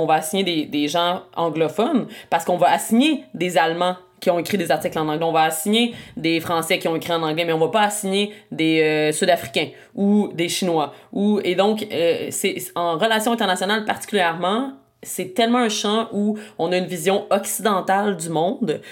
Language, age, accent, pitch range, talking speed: English, 30-49, Canadian, 175-215 Hz, 195 wpm